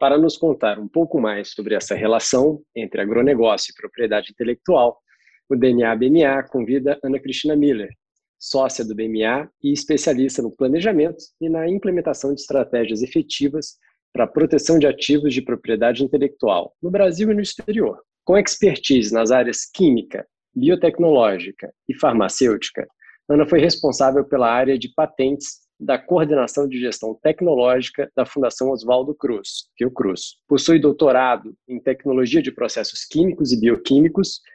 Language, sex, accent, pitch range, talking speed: Portuguese, male, Brazilian, 125-160 Hz, 140 wpm